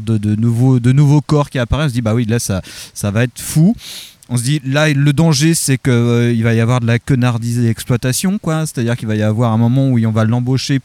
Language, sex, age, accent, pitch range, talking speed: French, male, 30-49, French, 115-145 Hz, 280 wpm